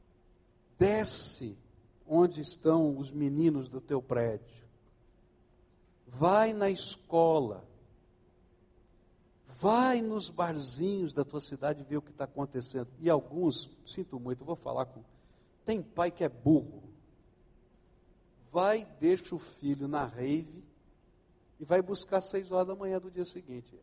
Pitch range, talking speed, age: 130-175 Hz, 130 wpm, 60-79